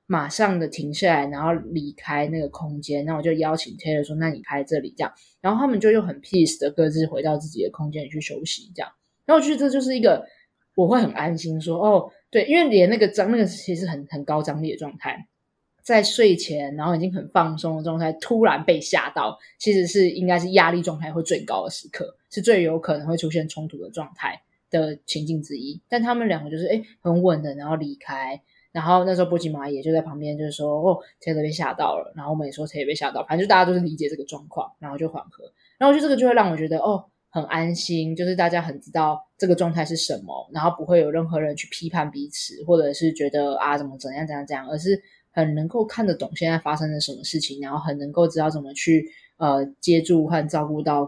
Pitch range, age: 150-185 Hz, 20-39